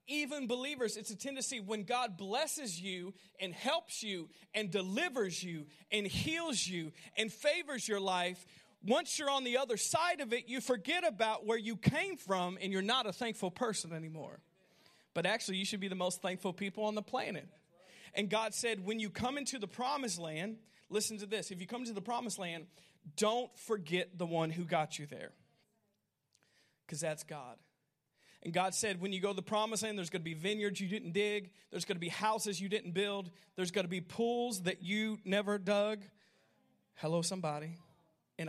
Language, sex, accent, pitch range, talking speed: English, male, American, 185-235 Hz, 195 wpm